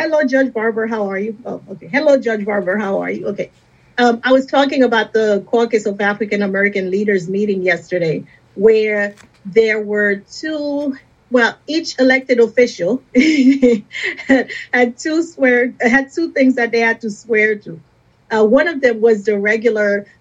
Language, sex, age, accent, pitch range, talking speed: English, female, 40-59, American, 200-240 Hz, 165 wpm